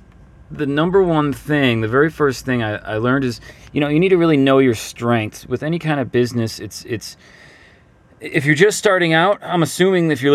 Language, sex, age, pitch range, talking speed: English, male, 30-49, 105-140 Hz, 215 wpm